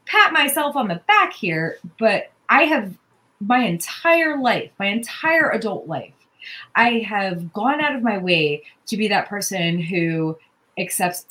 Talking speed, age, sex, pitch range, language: 155 wpm, 30-49, female, 165-220 Hz, English